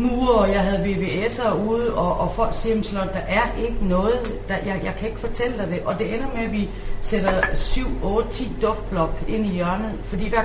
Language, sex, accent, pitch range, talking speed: English, female, Danish, 155-210 Hz, 220 wpm